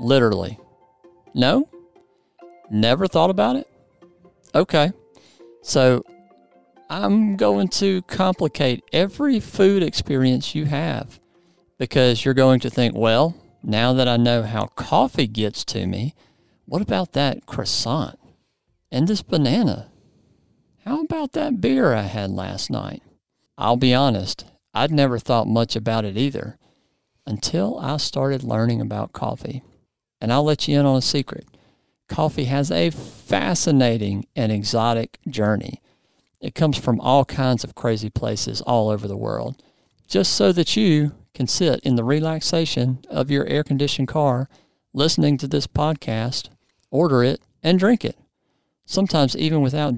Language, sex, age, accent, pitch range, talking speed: English, male, 50-69, American, 115-160 Hz, 140 wpm